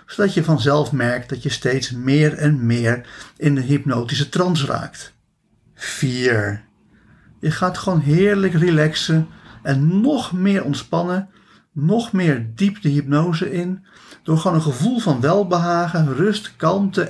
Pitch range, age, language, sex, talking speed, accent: 130-175 Hz, 50-69, Dutch, male, 135 wpm, Dutch